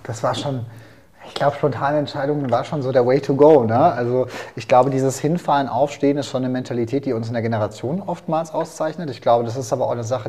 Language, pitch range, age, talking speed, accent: German, 120-150 Hz, 30-49, 235 wpm, German